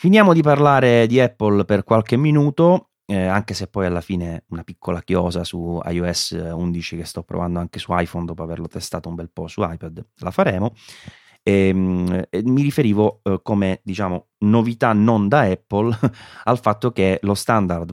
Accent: native